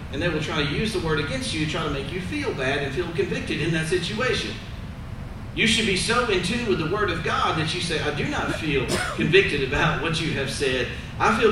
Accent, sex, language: American, male, English